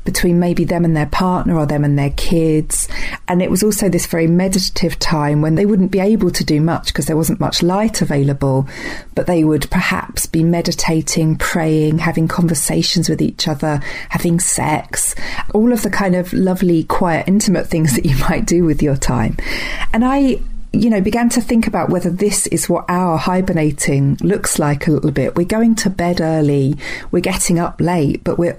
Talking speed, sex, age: 195 wpm, female, 40-59